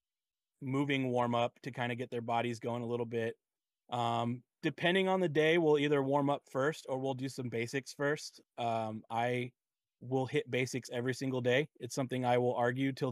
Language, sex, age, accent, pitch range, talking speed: English, male, 30-49, American, 120-140 Hz, 195 wpm